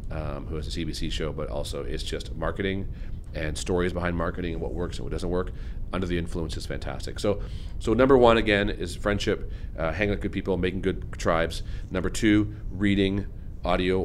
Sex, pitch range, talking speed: male, 80-100 Hz, 195 wpm